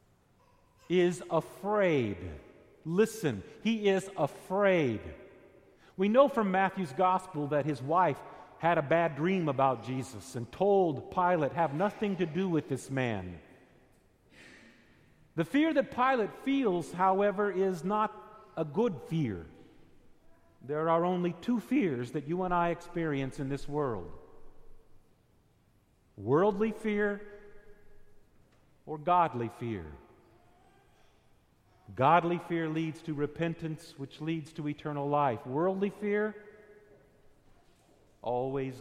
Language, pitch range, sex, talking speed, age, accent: English, 135-220 Hz, male, 110 wpm, 50-69, American